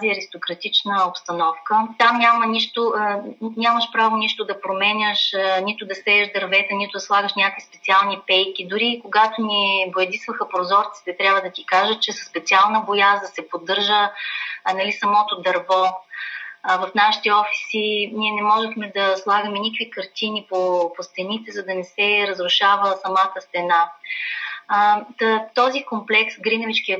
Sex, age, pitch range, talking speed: female, 30-49, 190-220 Hz, 140 wpm